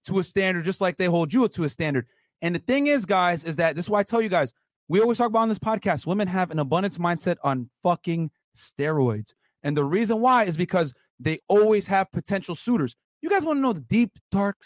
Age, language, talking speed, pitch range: 30-49, English, 240 wpm, 185-275 Hz